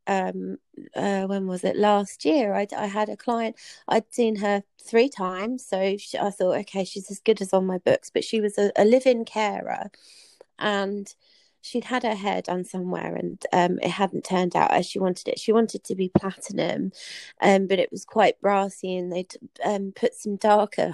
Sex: female